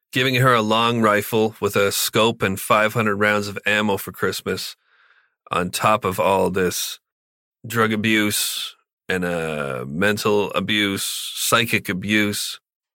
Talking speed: 130 wpm